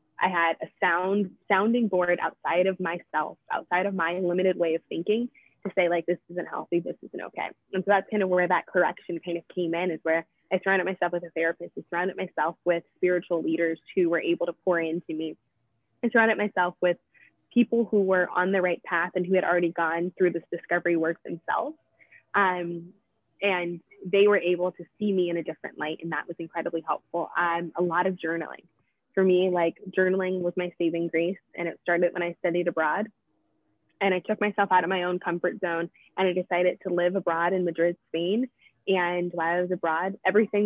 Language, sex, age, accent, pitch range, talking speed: English, female, 20-39, American, 170-190 Hz, 210 wpm